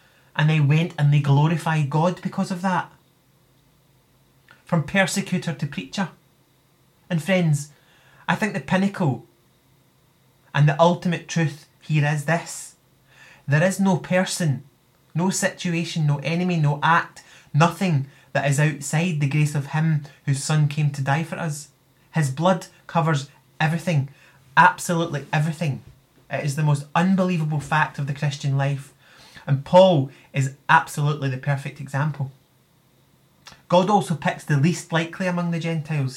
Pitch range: 140-170 Hz